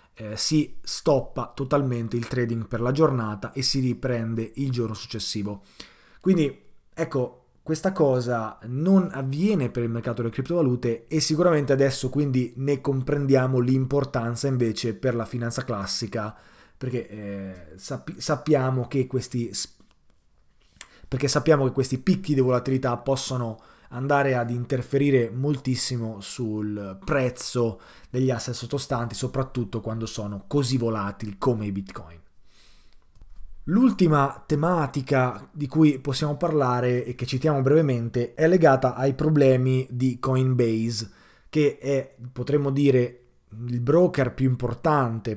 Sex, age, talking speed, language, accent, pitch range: male, 20-39, 125 wpm, Italian, native, 115-145 Hz